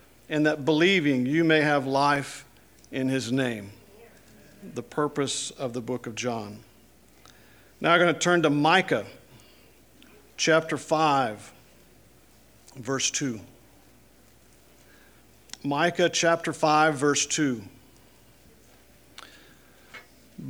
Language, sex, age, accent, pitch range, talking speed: English, male, 50-69, American, 130-175 Hz, 95 wpm